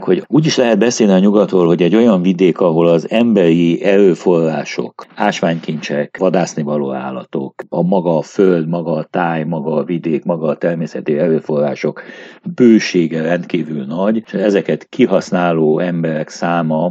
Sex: male